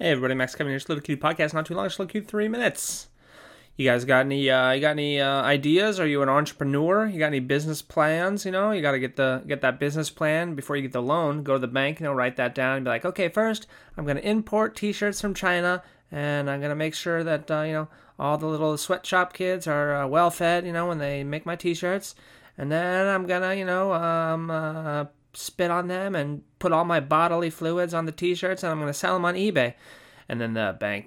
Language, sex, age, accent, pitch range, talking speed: English, male, 20-39, American, 135-175 Hz, 250 wpm